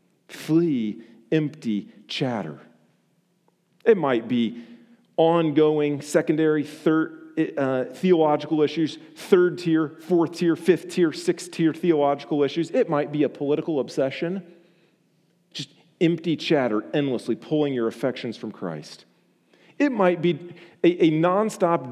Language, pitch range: English, 150-185 Hz